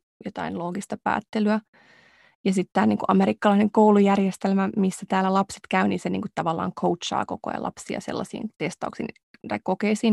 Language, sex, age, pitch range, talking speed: English, female, 20-39, 190-215 Hz, 140 wpm